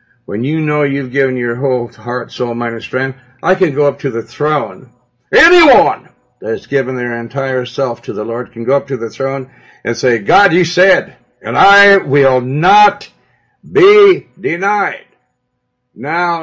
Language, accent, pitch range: English, American, 135-190 Hz